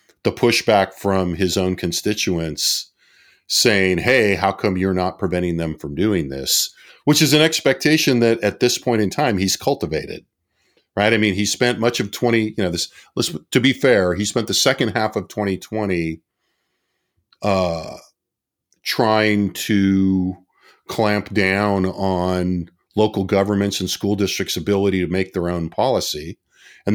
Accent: American